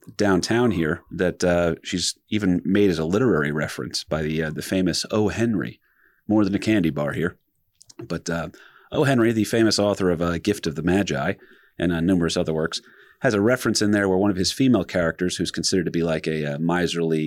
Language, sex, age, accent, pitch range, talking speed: English, male, 30-49, American, 85-115 Hz, 215 wpm